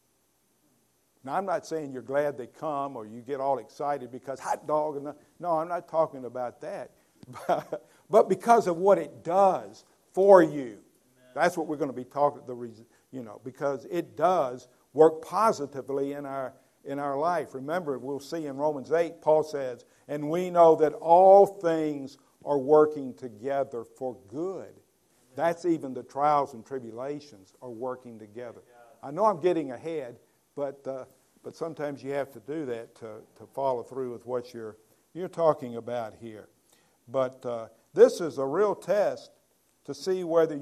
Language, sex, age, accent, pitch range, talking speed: English, male, 50-69, American, 125-160 Hz, 170 wpm